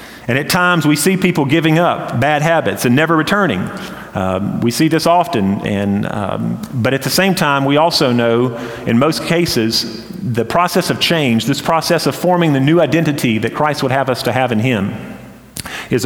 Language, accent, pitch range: English, American, 120-160 Hz